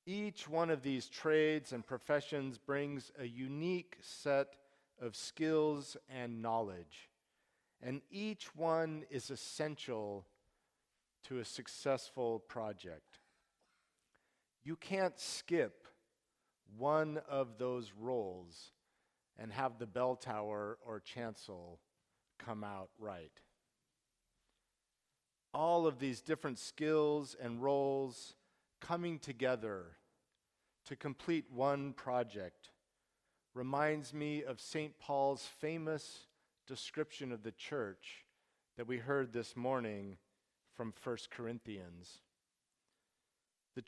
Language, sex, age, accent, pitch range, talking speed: English, male, 50-69, American, 115-150 Hz, 100 wpm